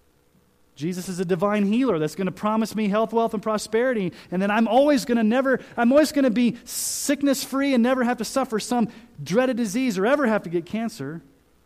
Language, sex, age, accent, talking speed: English, male, 30-49, American, 185 wpm